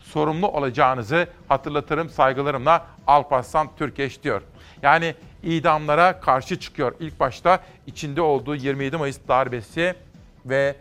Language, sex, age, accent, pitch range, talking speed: Turkish, male, 40-59, native, 135-170 Hz, 105 wpm